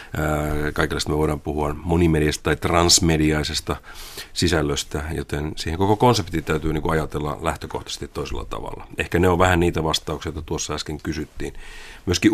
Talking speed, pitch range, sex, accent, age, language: 140 wpm, 75-90 Hz, male, native, 40-59, Finnish